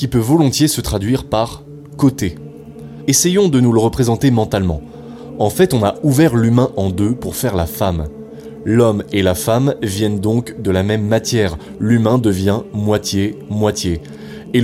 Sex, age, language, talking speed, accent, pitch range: male, 20-39, French, 160 wpm, French, 100-140 Hz